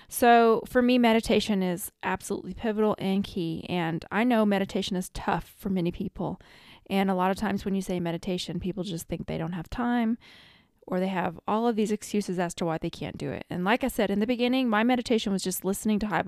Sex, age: female, 20-39